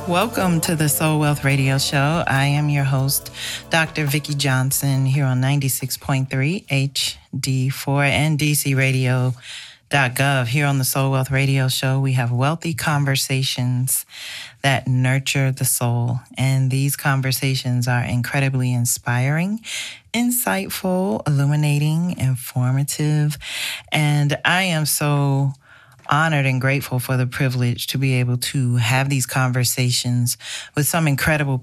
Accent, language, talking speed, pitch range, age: American, English, 120 wpm, 130-145 Hz, 40-59